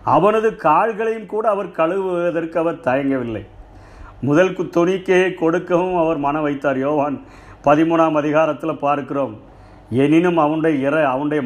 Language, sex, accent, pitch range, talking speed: Tamil, male, native, 145-190 Hz, 110 wpm